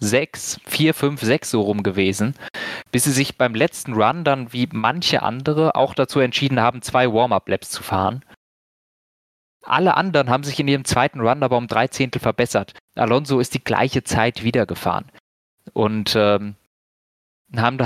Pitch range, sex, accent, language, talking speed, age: 105-135 Hz, male, German, German, 160 wpm, 20-39